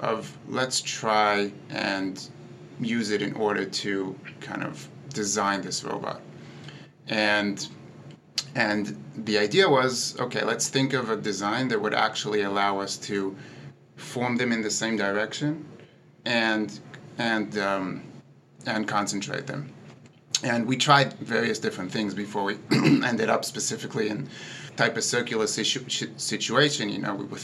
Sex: male